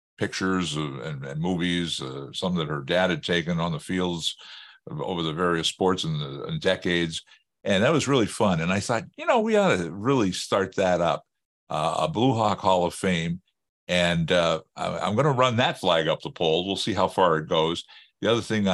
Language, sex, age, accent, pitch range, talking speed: English, male, 50-69, American, 85-120 Hz, 220 wpm